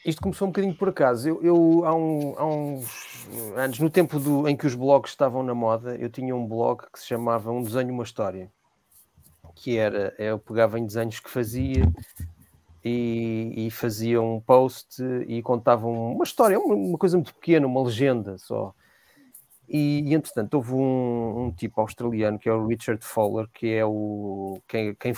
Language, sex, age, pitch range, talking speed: English, male, 30-49, 115-145 Hz, 185 wpm